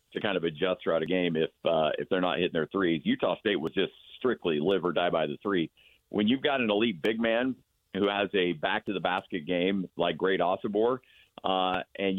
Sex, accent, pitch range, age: male, American, 95-110 Hz, 50-69